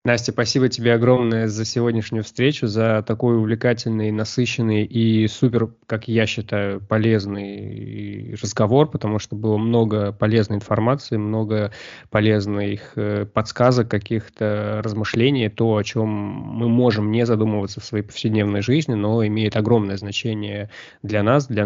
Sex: male